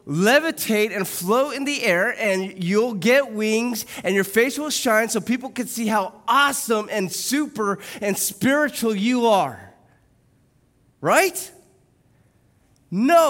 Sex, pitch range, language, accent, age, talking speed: male, 140-225 Hz, English, American, 20-39, 130 wpm